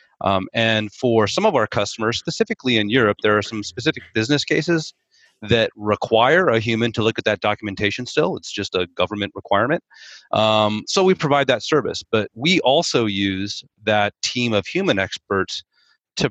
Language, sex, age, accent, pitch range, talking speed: English, male, 30-49, American, 100-120 Hz, 175 wpm